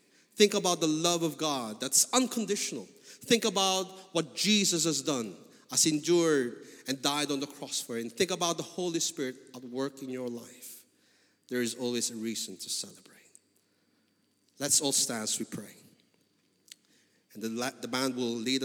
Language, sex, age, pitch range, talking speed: English, male, 30-49, 135-190 Hz, 165 wpm